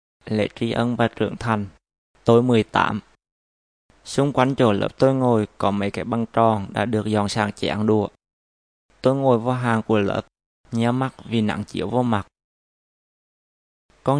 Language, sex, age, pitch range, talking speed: Vietnamese, male, 20-39, 100-125 Hz, 170 wpm